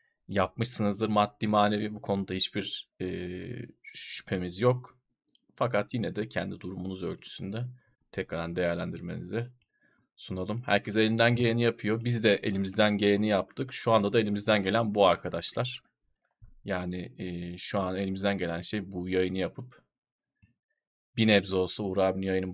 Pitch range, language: 95-110 Hz, Turkish